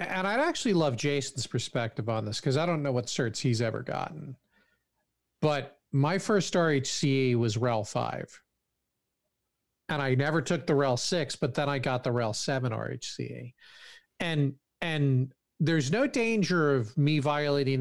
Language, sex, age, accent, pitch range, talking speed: English, male, 40-59, American, 125-165 Hz, 160 wpm